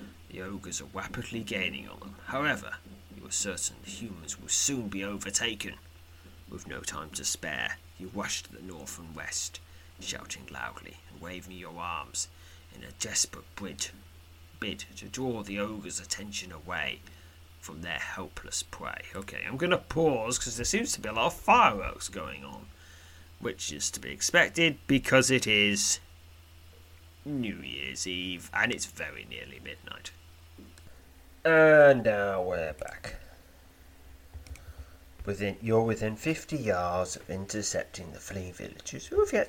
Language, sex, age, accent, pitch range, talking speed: English, male, 30-49, British, 85-100 Hz, 150 wpm